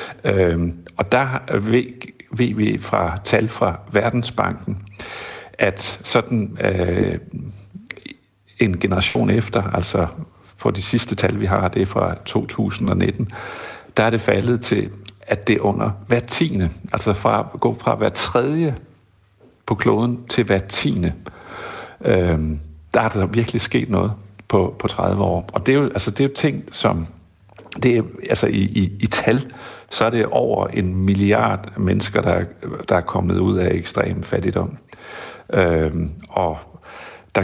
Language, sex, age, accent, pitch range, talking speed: Danish, male, 60-79, native, 95-110 Hz, 150 wpm